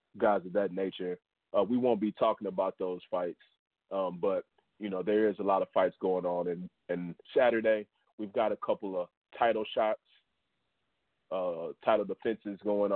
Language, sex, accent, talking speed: English, male, American, 175 wpm